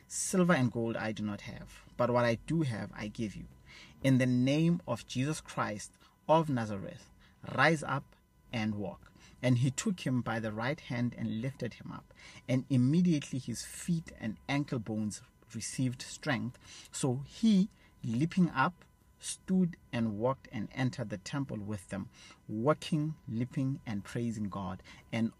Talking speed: 160 wpm